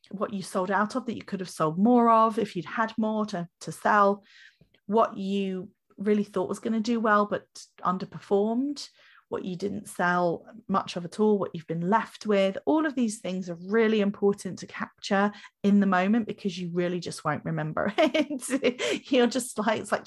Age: 30-49